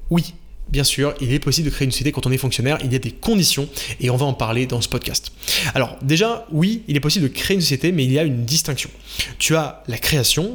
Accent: French